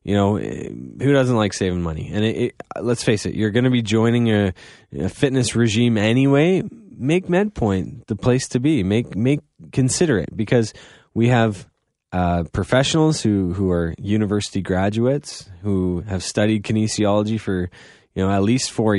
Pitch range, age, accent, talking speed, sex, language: 95-115 Hz, 20-39, American, 165 wpm, male, English